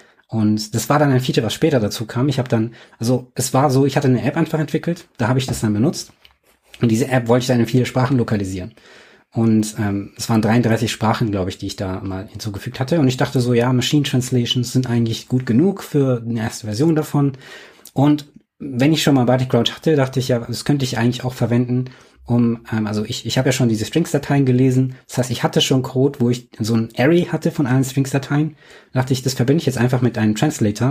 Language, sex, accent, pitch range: German, male, German, 115-140 Hz